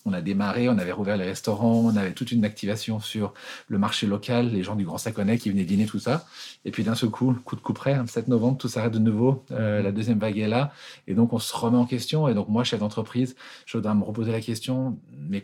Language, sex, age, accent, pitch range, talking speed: French, male, 40-59, French, 105-120 Hz, 260 wpm